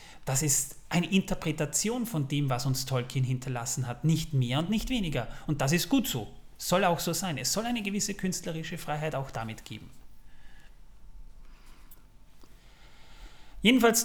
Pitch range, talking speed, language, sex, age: 135-175 Hz, 150 wpm, German, male, 30-49